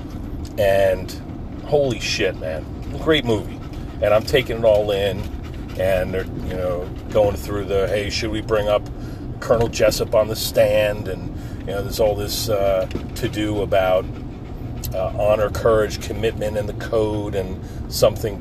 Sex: male